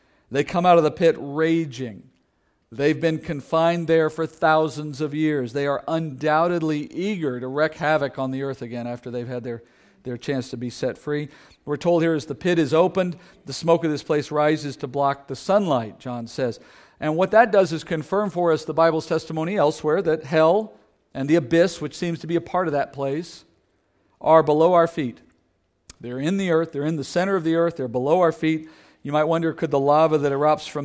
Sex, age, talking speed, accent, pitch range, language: male, 50-69, 215 wpm, American, 135-165 Hz, English